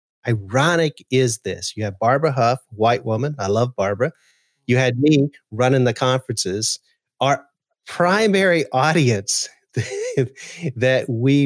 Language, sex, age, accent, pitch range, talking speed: English, male, 40-59, American, 115-170 Hz, 120 wpm